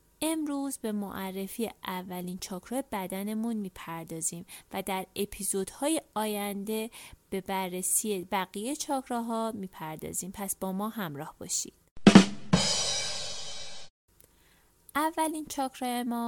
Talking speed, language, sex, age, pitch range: 90 wpm, Persian, female, 30-49, 190-250 Hz